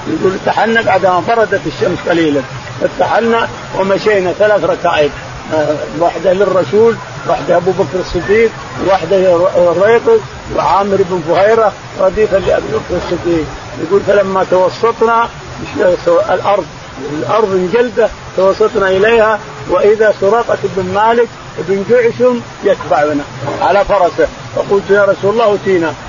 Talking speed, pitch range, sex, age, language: 110 wpm, 175-215 Hz, male, 50-69, Arabic